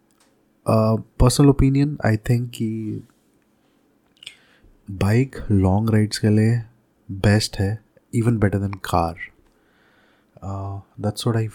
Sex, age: male, 20-39